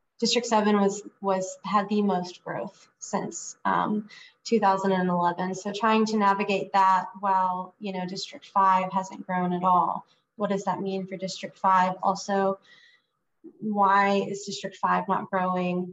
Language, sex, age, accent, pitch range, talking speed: English, female, 20-39, American, 190-215 Hz, 145 wpm